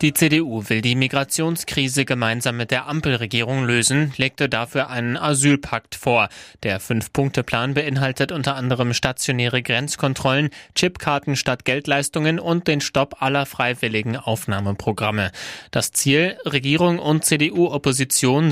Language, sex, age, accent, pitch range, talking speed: German, male, 30-49, German, 120-145 Hz, 115 wpm